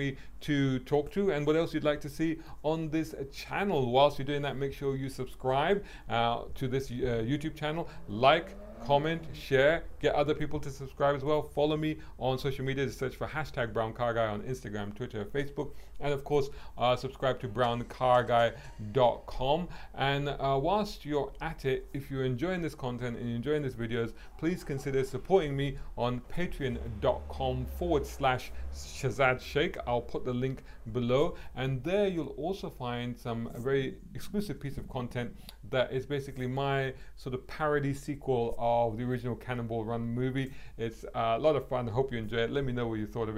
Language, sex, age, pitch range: English, male, 40-59, 120-145 Hz